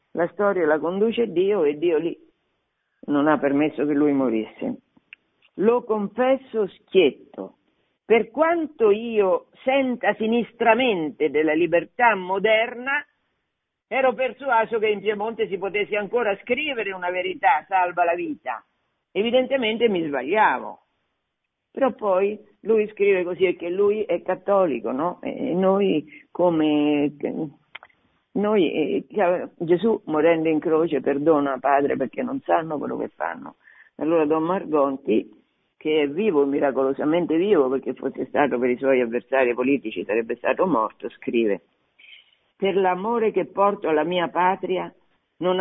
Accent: native